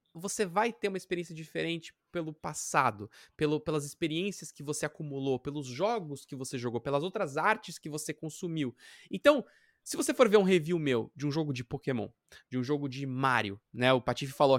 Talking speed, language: 190 wpm, Portuguese